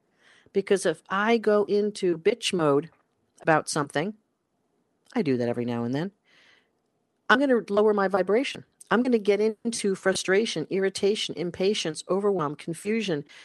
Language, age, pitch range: English, 50-69, 155-200 Hz